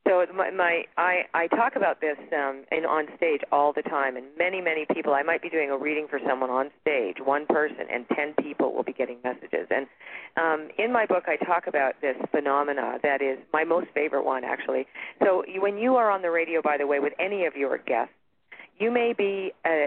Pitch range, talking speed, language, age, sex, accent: 140-185 Hz, 225 wpm, English, 40-59, female, American